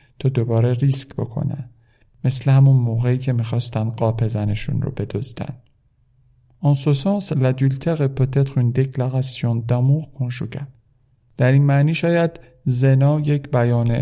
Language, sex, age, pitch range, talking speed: Persian, male, 50-69, 120-140 Hz, 105 wpm